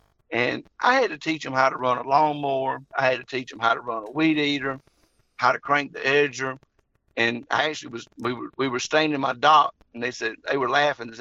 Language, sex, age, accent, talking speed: English, male, 50-69, American, 240 wpm